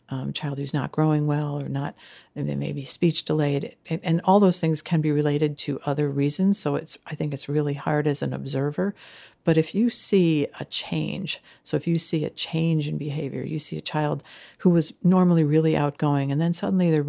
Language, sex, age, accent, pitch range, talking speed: English, female, 50-69, American, 145-170 Hz, 220 wpm